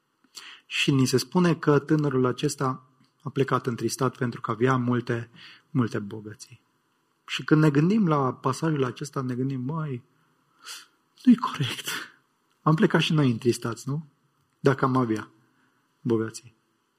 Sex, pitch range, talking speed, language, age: male, 120-155 Hz, 135 wpm, English, 30-49